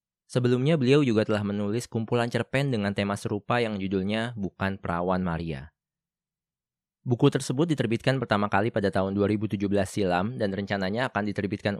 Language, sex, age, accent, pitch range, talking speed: Indonesian, male, 20-39, native, 100-125 Hz, 140 wpm